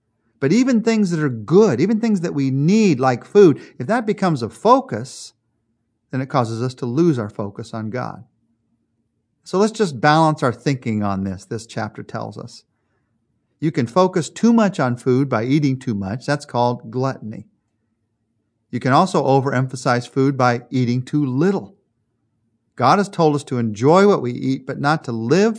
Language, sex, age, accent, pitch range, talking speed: English, male, 40-59, American, 115-165 Hz, 180 wpm